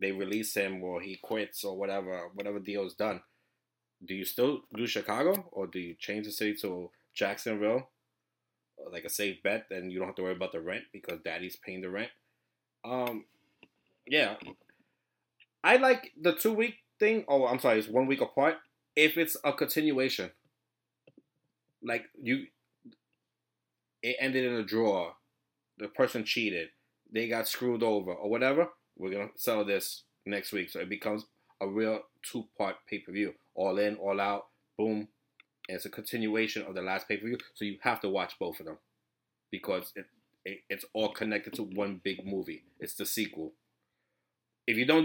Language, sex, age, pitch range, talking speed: English, male, 20-39, 95-120 Hz, 180 wpm